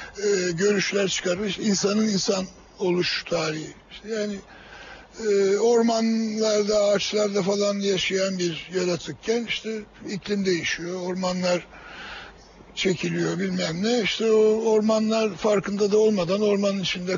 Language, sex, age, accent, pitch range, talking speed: Turkish, male, 60-79, native, 185-220 Hz, 110 wpm